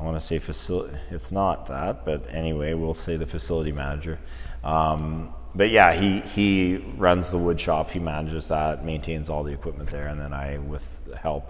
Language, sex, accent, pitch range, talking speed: English, male, American, 75-90 Hz, 200 wpm